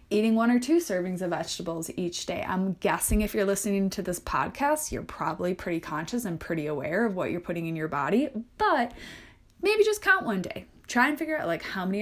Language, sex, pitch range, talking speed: English, female, 185-245 Hz, 220 wpm